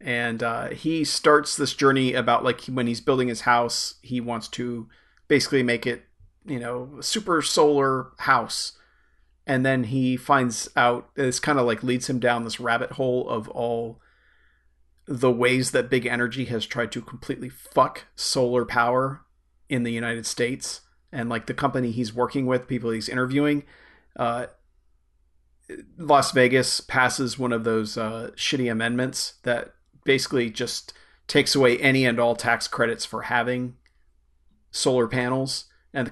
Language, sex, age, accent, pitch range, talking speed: English, male, 40-59, American, 115-130 Hz, 155 wpm